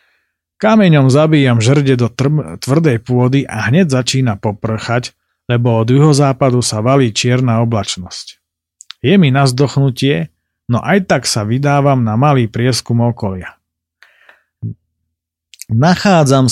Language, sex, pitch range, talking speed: Slovak, male, 105-145 Hz, 115 wpm